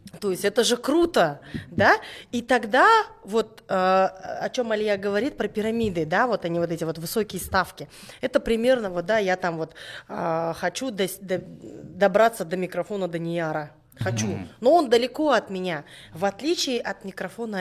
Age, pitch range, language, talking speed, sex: 30-49, 170-215 Hz, Russian, 160 wpm, female